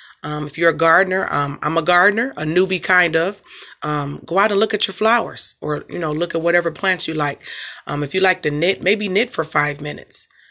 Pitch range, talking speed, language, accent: 155-190 Hz, 235 wpm, English, American